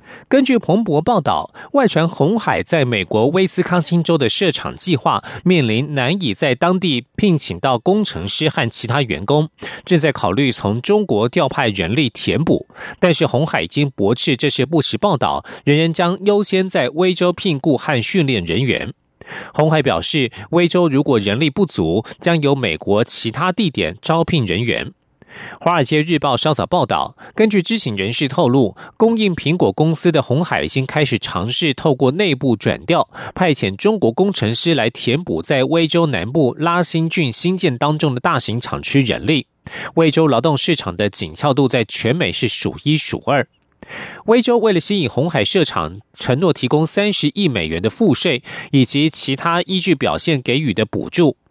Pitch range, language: 125-175 Hz, German